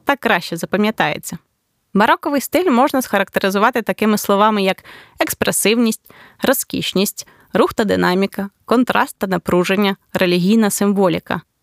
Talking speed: 105 wpm